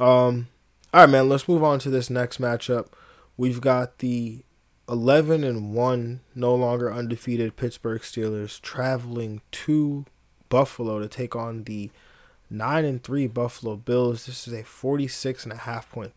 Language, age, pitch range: English, 20-39, 110-125 Hz